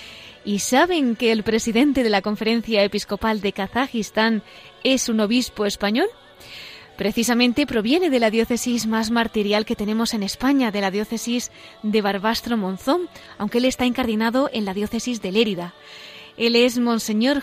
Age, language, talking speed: 20-39, Spanish, 150 wpm